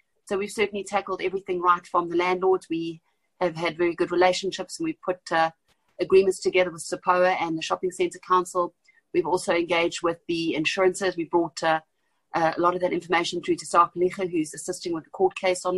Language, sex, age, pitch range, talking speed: English, female, 30-49, 175-190 Hz, 205 wpm